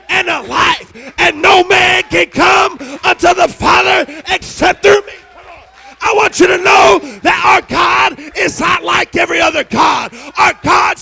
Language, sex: English, male